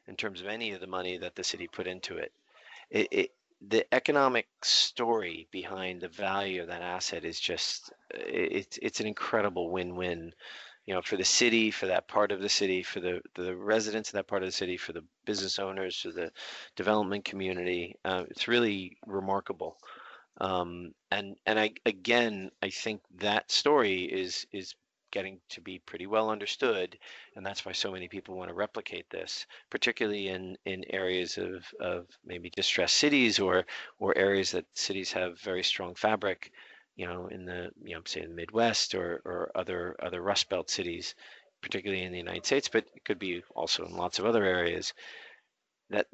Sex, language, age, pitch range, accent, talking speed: male, English, 40-59, 90-105 Hz, American, 185 wpm